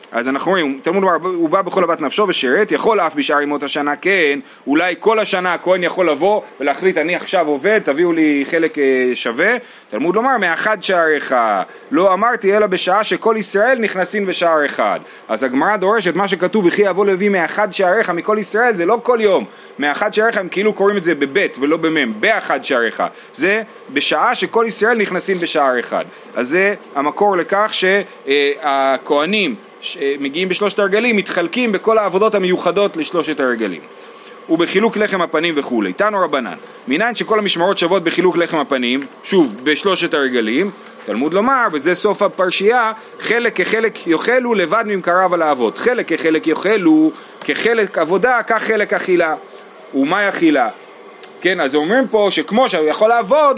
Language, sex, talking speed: Hebrew, male, 155 wpm